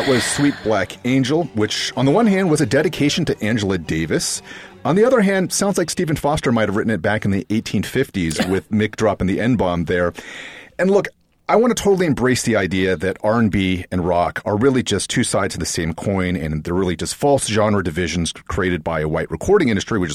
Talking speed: 220 wpm